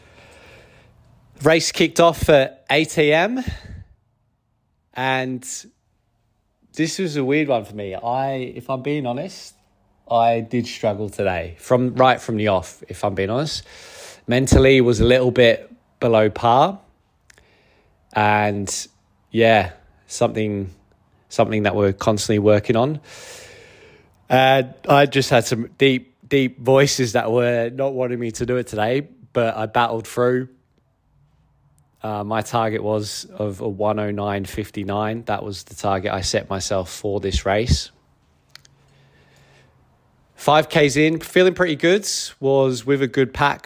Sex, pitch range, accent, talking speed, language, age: male, 105-130 Hz, British, 130 wpm, English, 20-39